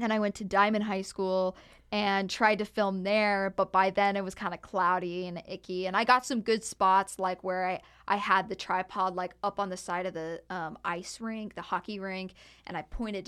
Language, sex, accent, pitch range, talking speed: English, female, American, 185-225 Hz, 230 wpm